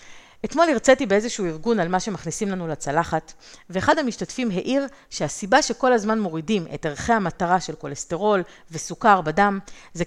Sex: female